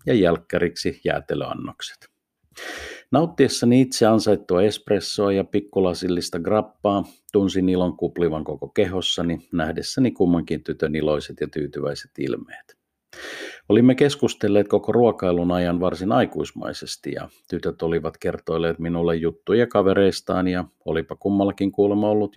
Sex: male